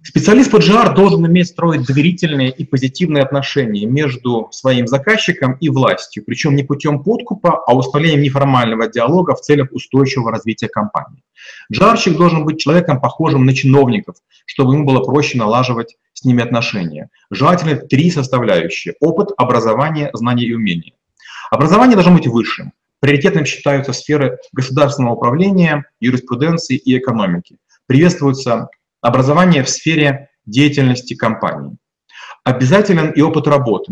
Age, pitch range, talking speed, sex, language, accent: 30-49, 125-160 Hz, 130 wpm, male, Russian, native